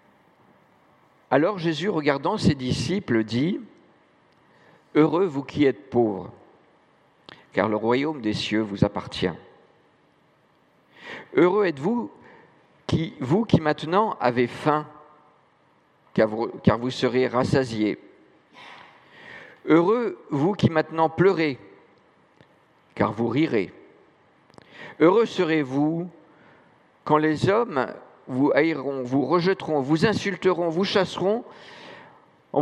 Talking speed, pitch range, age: 100 wpm, 130-180 Hz, 50-69